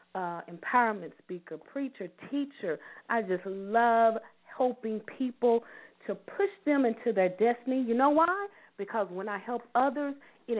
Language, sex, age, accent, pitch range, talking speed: English, female, 40-59, American, 180-255 Hz, 140 wpm